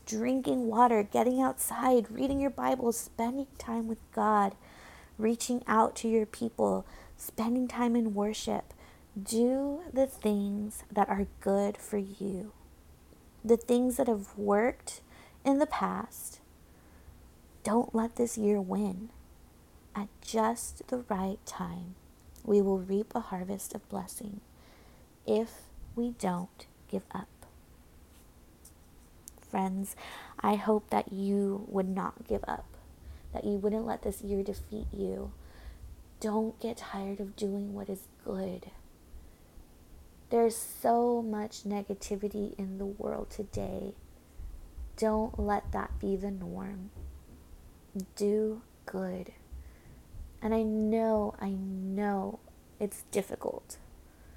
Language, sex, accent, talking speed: English, female, American, 115 wpm